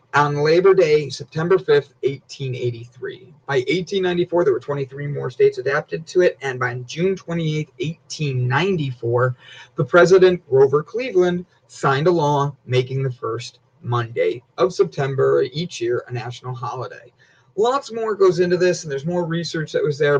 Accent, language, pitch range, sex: American, English, 135-190 Hz, male